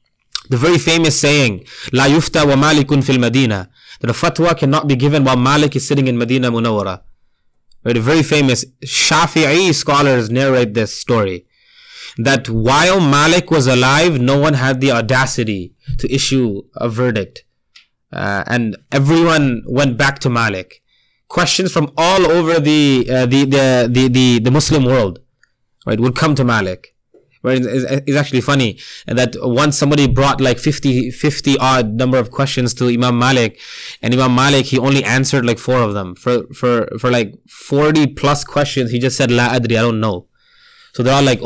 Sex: male